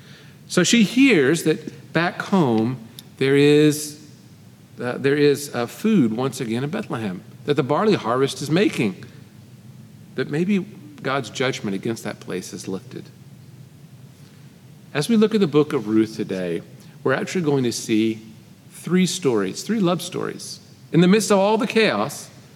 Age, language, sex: 50-69, English, male